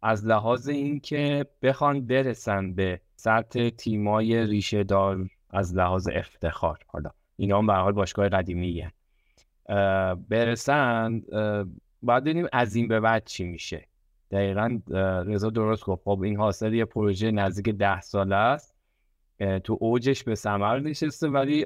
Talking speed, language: 135 wpm, Persian